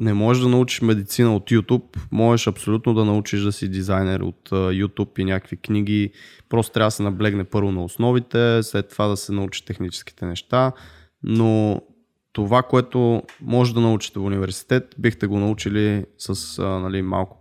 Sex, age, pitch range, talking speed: male, 20-39, 100-120 Hz, 165 wpm